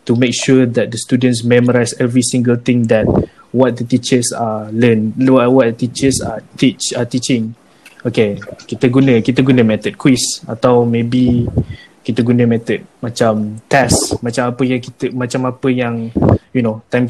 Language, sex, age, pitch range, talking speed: Malay, male, 20-39, 115-130 Hz, 160 wpm